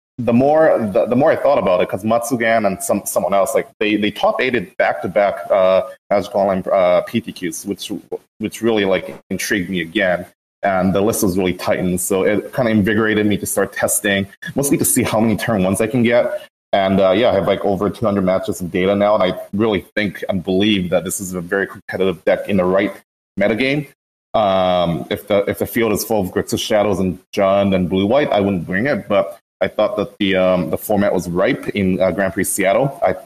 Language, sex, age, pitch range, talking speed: English, male, 30-49, 95-110 Hz, 220 wpm